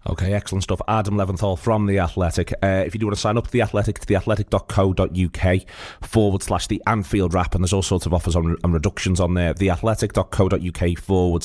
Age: 30-49